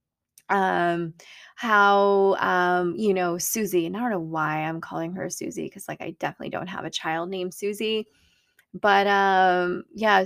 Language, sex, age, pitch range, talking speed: English, female, 20-39, 180-230 Hz, 165 wpm